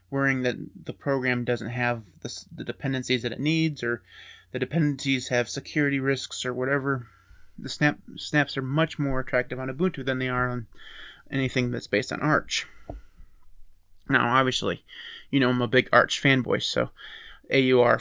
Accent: American